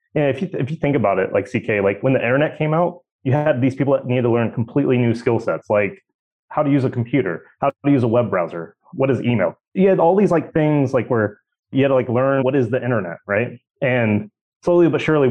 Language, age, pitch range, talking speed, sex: English, 30-49, 105-130 Hz, 250 wpm, male